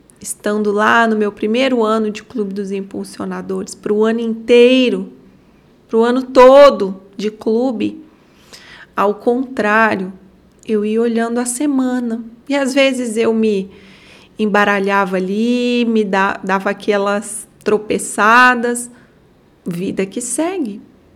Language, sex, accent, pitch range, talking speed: Portuguese, female, Brazilian, 210-250 Hz, 115 wpm